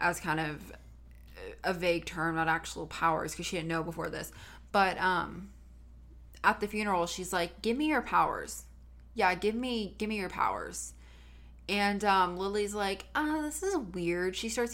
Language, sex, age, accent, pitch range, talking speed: English, female, 20-39, American, 165-215 Hz, 180 wpm